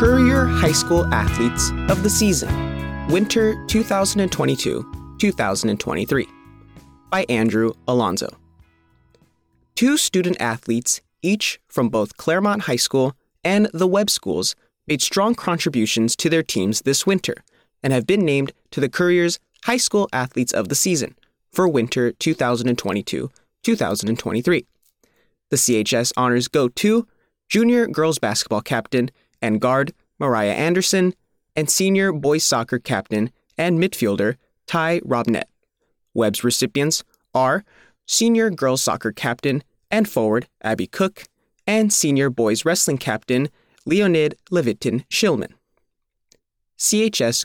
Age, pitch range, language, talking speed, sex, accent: 20-39, 115-190 Hz, English, 115 wpm, male, American